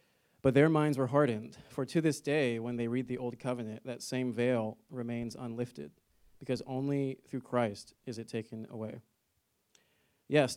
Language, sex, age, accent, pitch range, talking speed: English, male, 30-49, American, 110-130 Hz, 165 wpm